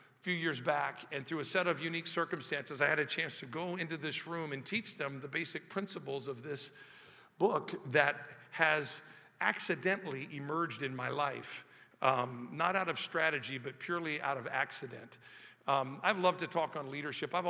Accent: American